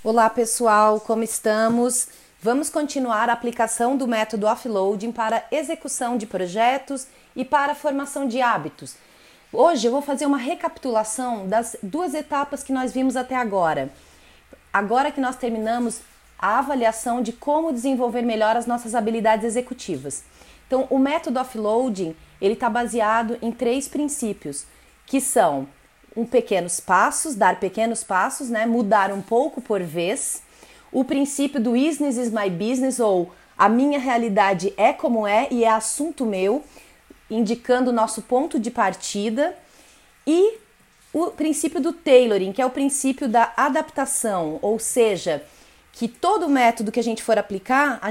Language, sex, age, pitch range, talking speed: Portuguese, female, 30-49, 220-275 Hz, 145 wpm